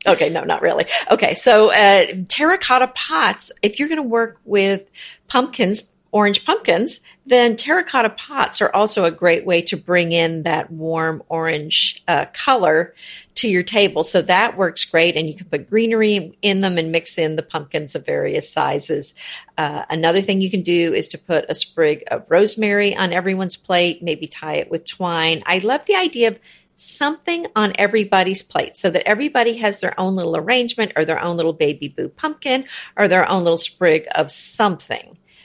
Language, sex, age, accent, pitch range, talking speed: English, female, 50-69, American, 170-230 Hz, 185 wpm